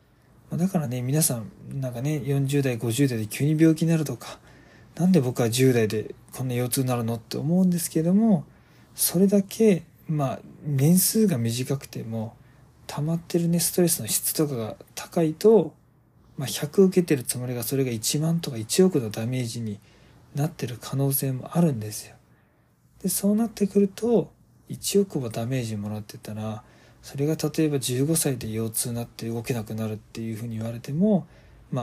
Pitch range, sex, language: 115-160 Hz, male, Japanese